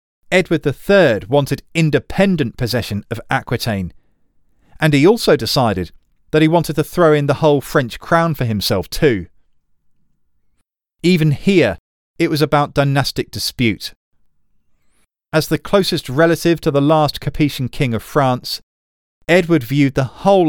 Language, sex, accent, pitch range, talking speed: English, male, British, 100-160 Hz, 135 wpm